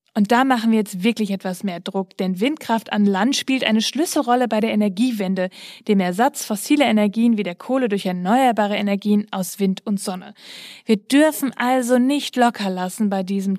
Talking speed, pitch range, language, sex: 180 wpm, 200-250 Hz, German, female